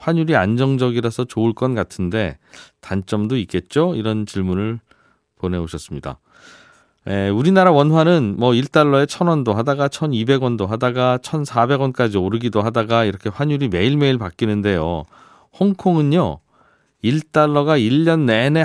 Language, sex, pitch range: Korean, male, 100-140 Hz